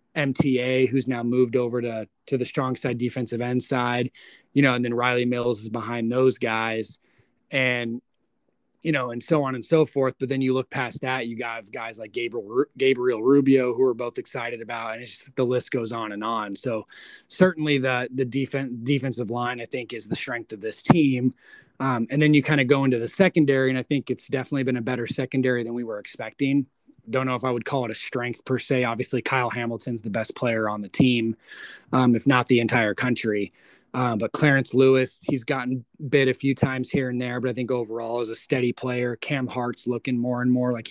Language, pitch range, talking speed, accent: English, 120-140 Hz, 220 wpm, American